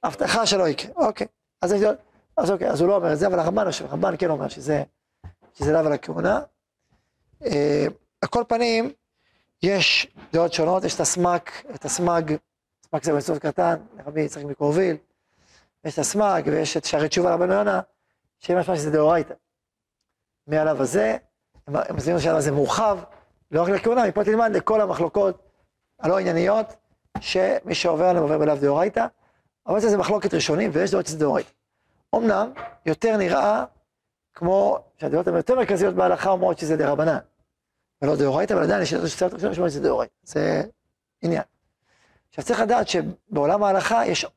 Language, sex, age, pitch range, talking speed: Hebrew, male, 40-59, 155-210 Hz, 150 wpm